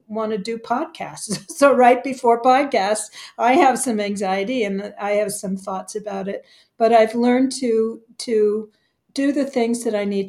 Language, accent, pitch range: English, American, 195-235 Hz